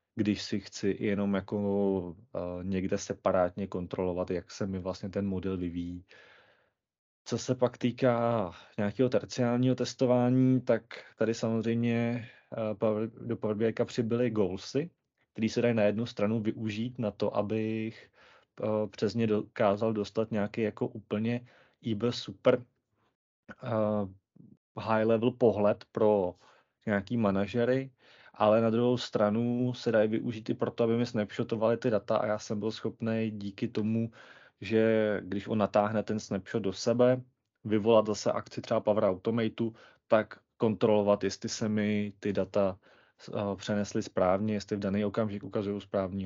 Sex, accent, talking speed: male, native, 135 wpm